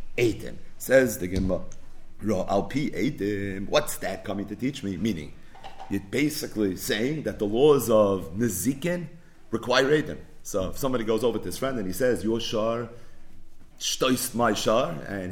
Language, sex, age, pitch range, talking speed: English, male, 30-49, 105-165 Hz, 140 wpm